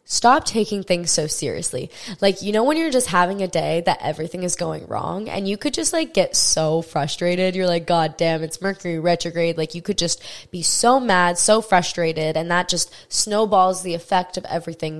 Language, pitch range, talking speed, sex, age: English, 170-210 Hz, 205 wpm, female, 20-39